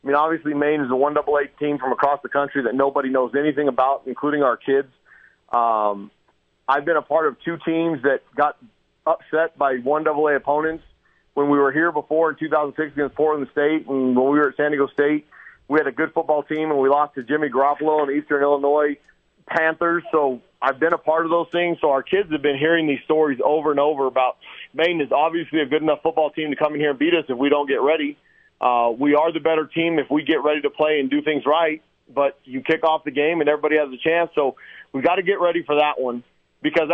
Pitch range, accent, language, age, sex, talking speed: 145-160 Hz, American, English, 40-59, male, 235 wpm